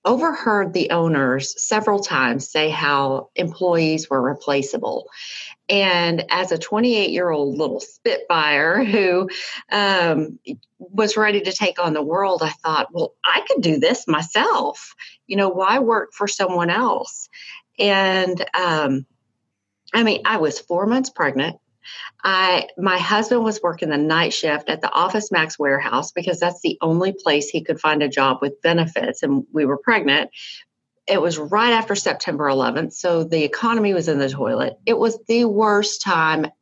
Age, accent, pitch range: 40-59, American, 155-210 Hz